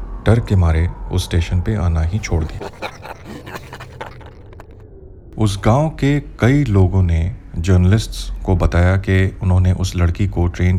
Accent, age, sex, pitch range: native, 30-49, male, 90-105 Hz